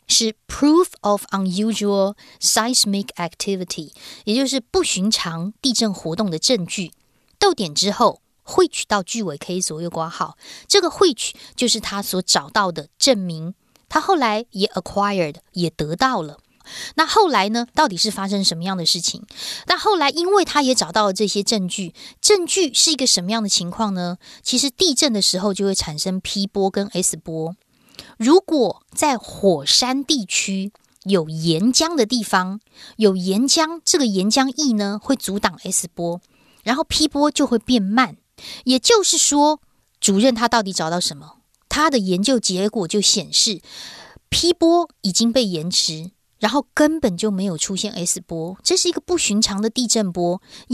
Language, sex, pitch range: Chinese, female, 185-265 Hz